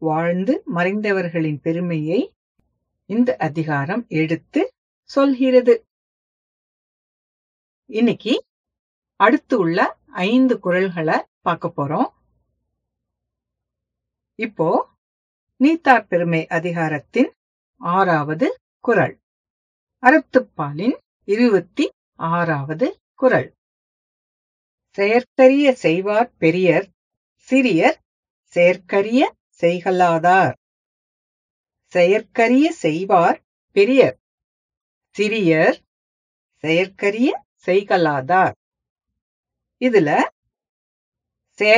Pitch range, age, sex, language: 170-260 Hz, 50-69, female, English